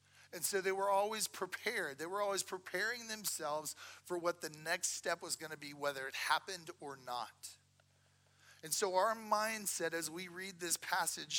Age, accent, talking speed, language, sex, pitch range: 40-59, American, 180 wpm, English, male, 135-175 Hz